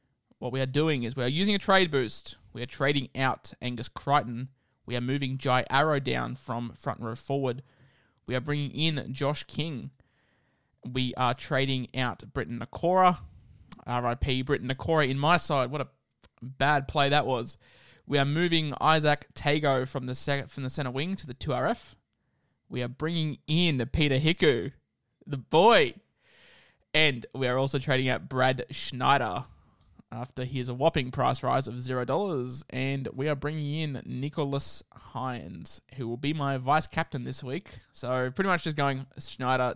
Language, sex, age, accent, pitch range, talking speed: English, male, 20-39, Australian, 125-145 Hz, 170 wpm